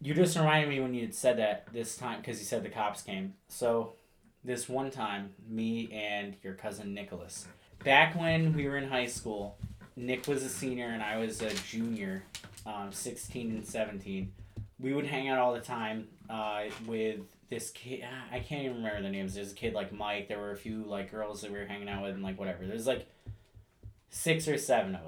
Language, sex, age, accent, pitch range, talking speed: English, male, 20-39, American, 105-130 Hz, 215 wpm